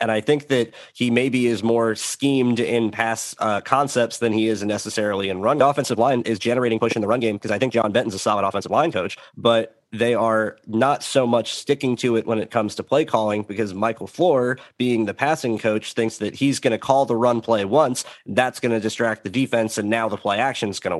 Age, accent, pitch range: 30-49, American, 110-125 Hz